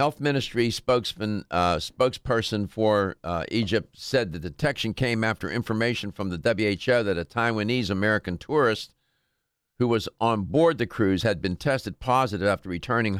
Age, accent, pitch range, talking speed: 50-69, American, 105-135 Hz, 150 wpm